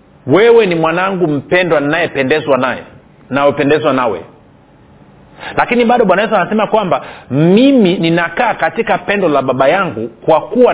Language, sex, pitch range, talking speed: Swahili, male, 150-195 Hz, 130 wpm